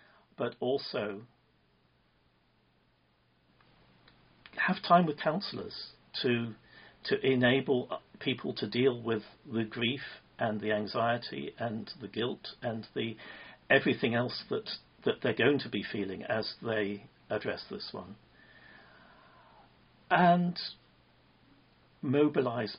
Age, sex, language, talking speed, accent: 50-69, male, English, 105 wpm, British